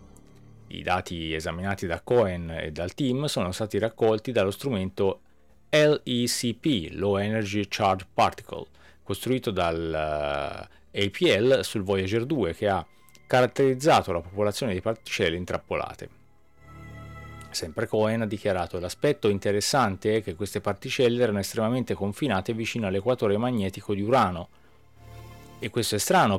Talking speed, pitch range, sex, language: 120 wpm, 95-120 Hz, male, Italian